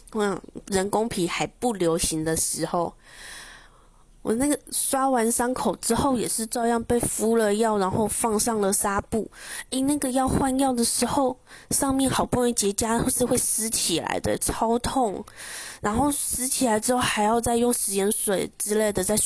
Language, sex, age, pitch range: Chinese, female, 20-39, 175-235 Hz